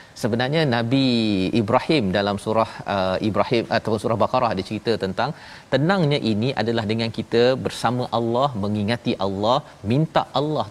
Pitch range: 110-135 Hz